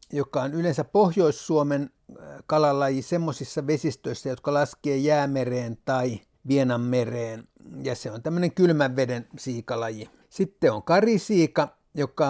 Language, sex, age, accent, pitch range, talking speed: Finnish, male, 60-79, native, 130-155 Hz, 115 wpm